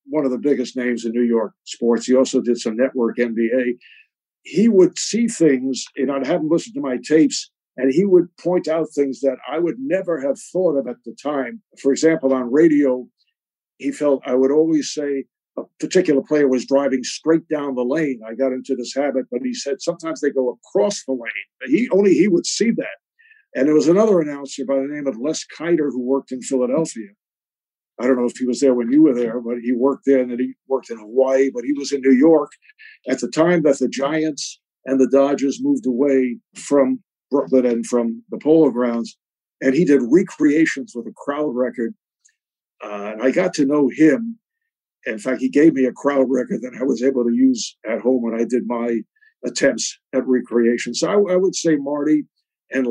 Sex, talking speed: male, 210 wpm